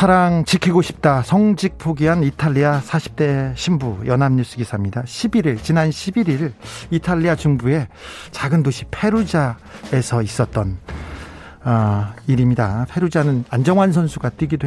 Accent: native